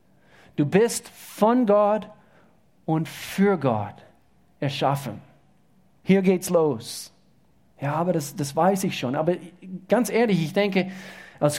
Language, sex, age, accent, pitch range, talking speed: German, male, 40-59, German, 165-210 Hz, 125 wpm